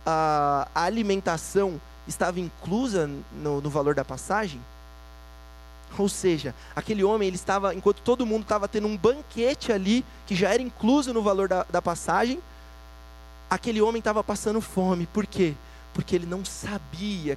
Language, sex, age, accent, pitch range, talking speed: Portuguese, male, 20-39, Brazilian, 145-210 Hz, 150 wpm